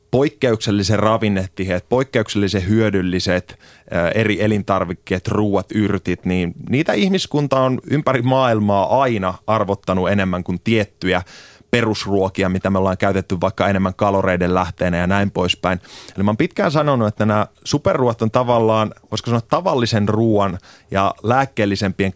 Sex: male